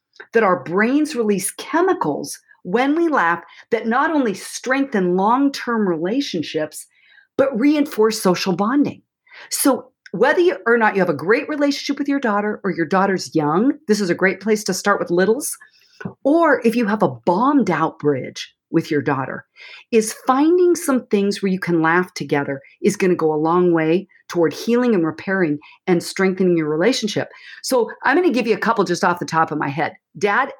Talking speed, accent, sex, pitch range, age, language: 185 wpm, American, female, 180-285 Hz, 40-59, English